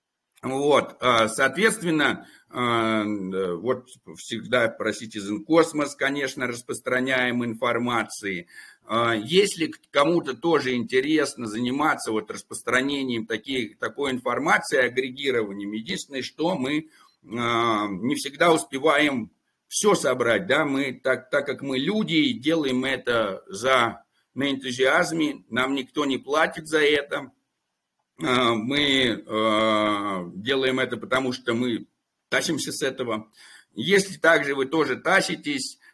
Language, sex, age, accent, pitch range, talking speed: Russian, male, 60-79, native, 120-155 Hz, 105 wpm